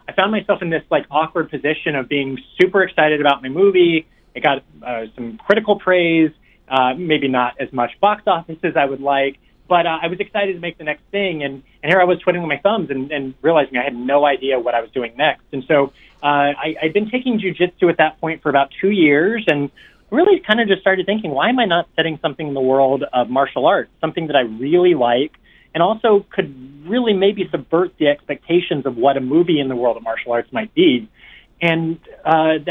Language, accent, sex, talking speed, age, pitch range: English, American, male, 225 wpm, 30-49, 135-180 Hz